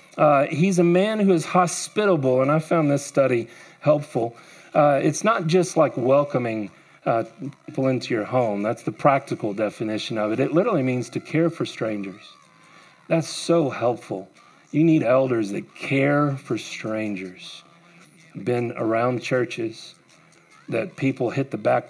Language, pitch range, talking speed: English, 105-150 Hz, 150 wpm